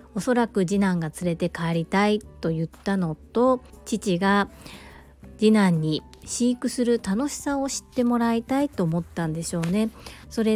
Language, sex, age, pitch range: Japanese, female, 40-59, 170-225 Hz